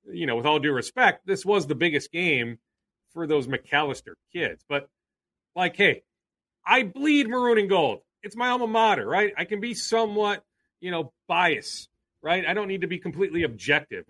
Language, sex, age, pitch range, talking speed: English, male, 40-59, 150-205 Hz, 185 wpm